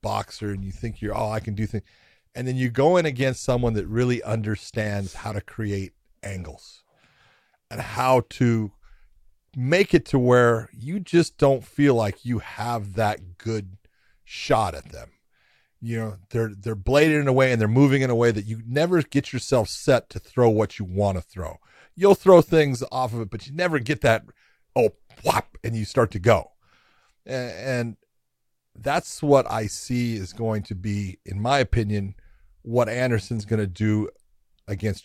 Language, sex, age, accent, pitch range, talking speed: English, male, 40-59, American, 105-130 Hz, 185 wpm